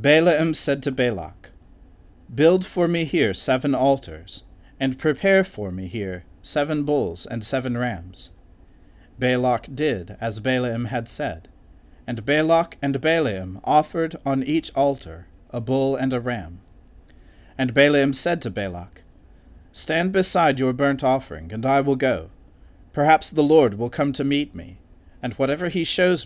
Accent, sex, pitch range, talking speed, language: American, male, 90-145 Hz, 150 wpm, English